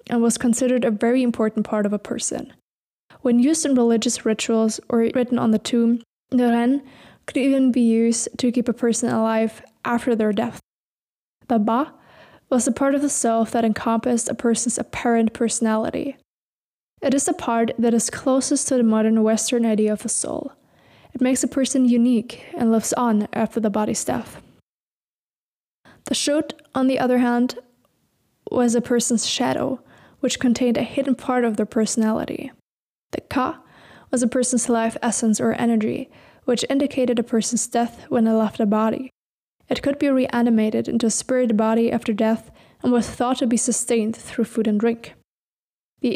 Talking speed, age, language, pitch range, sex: 175 wpm, 20-39, English, 225-255 Hz, female